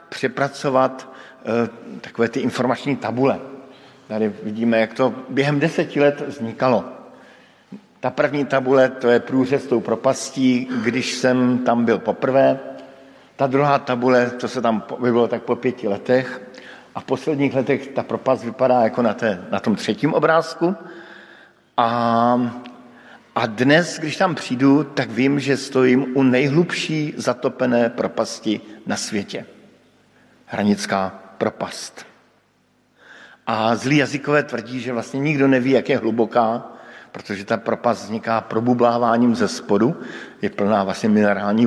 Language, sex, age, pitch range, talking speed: Slovak, male, 50-69, 115-140 Hz, 130 wpm